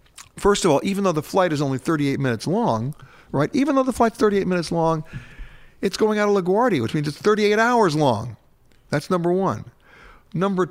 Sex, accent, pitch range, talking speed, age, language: male, American, 140-195 Hz, 195 wpm, 50-69, English